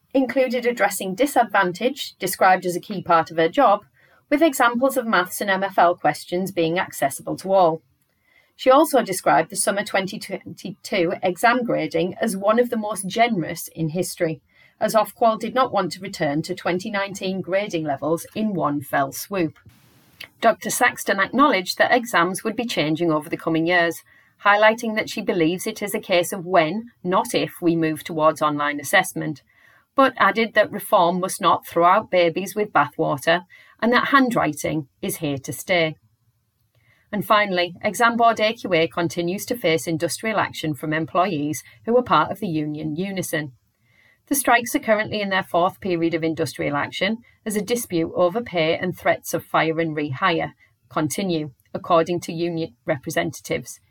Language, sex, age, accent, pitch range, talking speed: English, female, 40-59, British, 160-215 Hz, 165 wpm